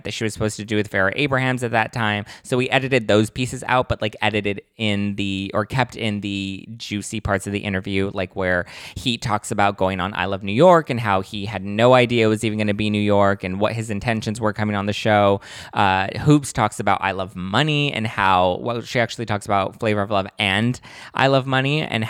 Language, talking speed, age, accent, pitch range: English, 240 wpm, 20-39, American, 100-115 Hz